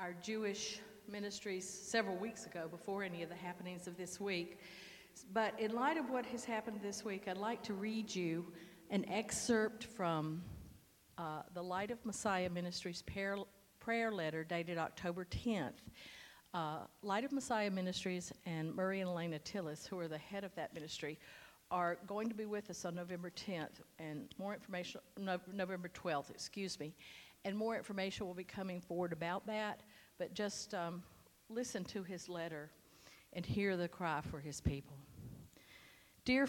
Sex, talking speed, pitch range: female, 165 wpm, 170-210 Hz